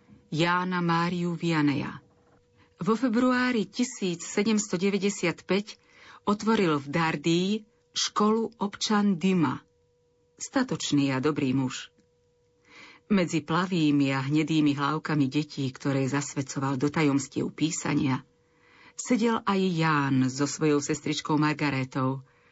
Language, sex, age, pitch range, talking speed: Slovak, female, 40-59, 140-180 Hz, 90 wpm